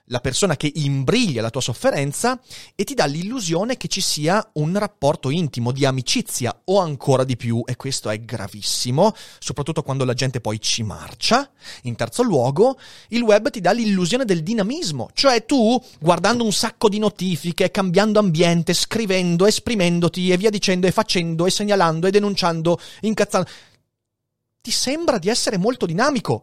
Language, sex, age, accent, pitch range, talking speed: Italian, male, 30-49, native, 135-210 Hz, 160 wpm